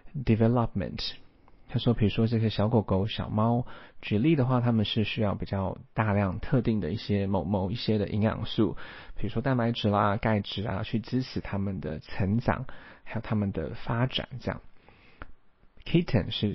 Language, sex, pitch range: Chinese, male, 100-120 Hz